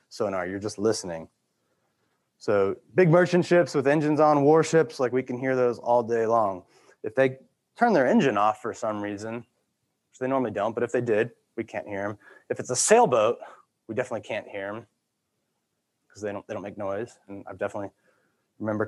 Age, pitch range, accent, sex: 20-39, 115-140 Hz, American, male